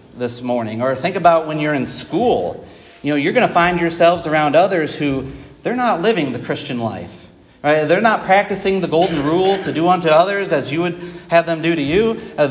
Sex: male